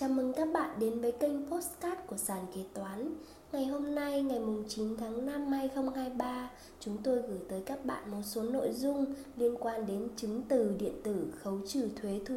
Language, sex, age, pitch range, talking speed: Vietnamese, female, 20-39, 220-270 Hz, 200 wpm